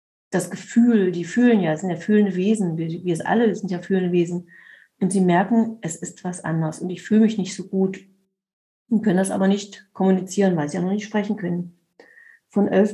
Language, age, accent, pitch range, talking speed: German, 40-59, German, 180-210 Hz, 220 wpm